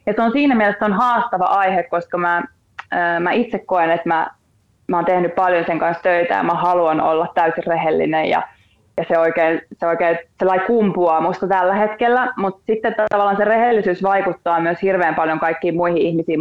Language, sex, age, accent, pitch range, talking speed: Finnish, female, 20-39, native, 170-195 Hz, 190 wpm